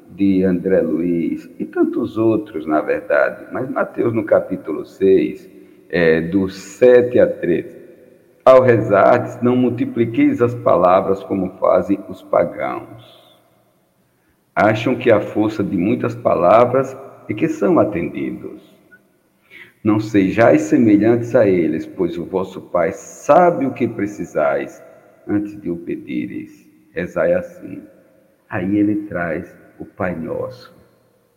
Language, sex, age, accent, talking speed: Portuguese, male, 60-79, Brazilian, 125 wpm